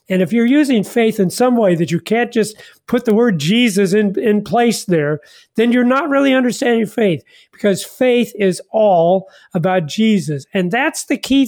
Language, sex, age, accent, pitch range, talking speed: English, male, 50-69, American, 175-235 Hz, 190 wpm